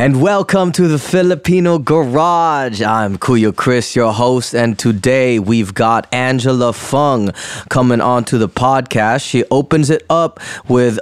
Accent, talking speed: American, 145 wpm